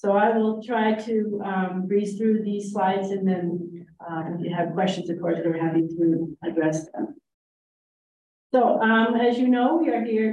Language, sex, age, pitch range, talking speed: English, female, 40-59, 175-210 Hz, 185 wpm